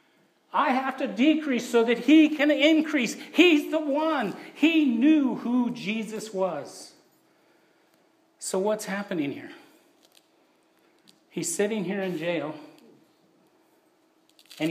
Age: 50-69